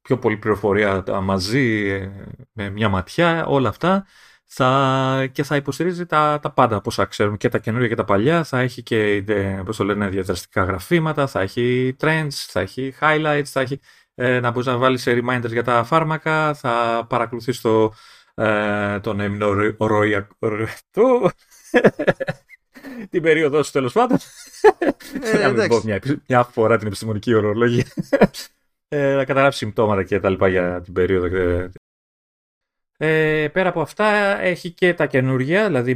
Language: Greek